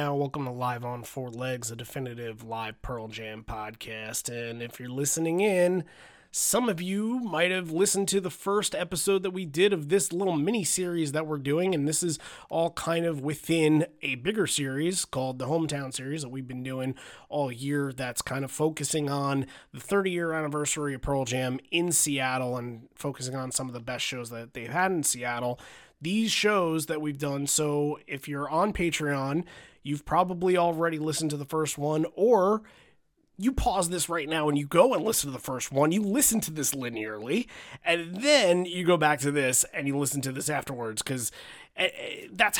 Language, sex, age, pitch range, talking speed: English, male, 30-49, 130-170 Hz, 190 wpm